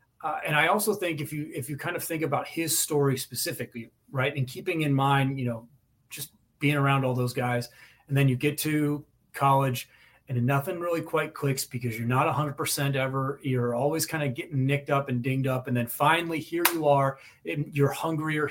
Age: 30-49